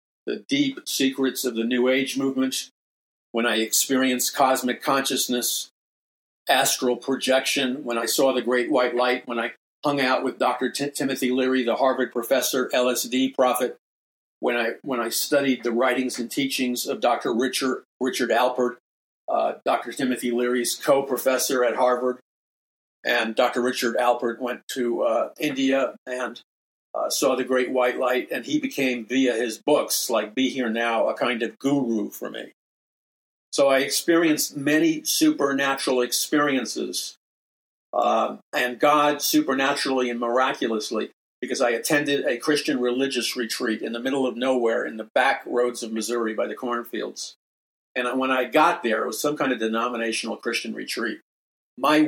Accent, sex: American, male